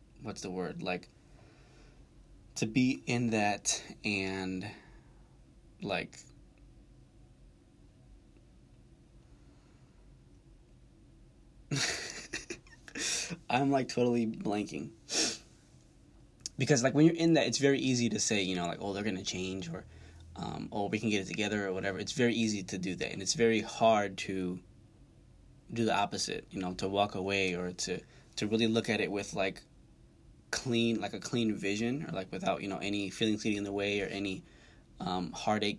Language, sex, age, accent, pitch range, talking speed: English, male, 20-39, American, 95-115 Hz, 155 wpm